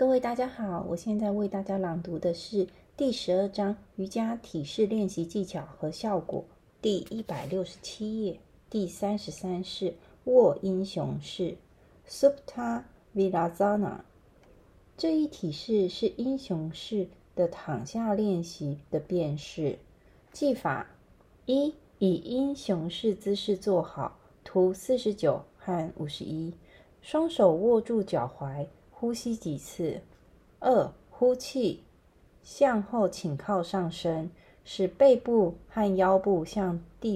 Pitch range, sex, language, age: 170-235 Hz, female, Chinese, 30-49